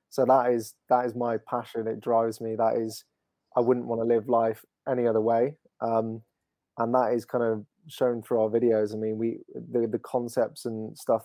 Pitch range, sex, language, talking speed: 110-130 Hz, male, English, 210 wpm